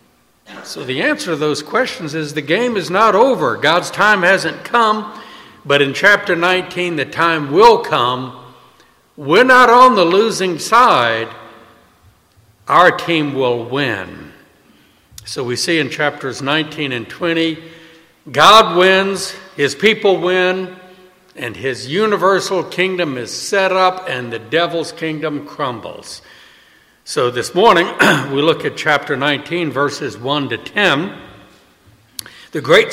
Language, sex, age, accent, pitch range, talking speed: English, male, 60-79, American, 145-190 Hz, 135 wpm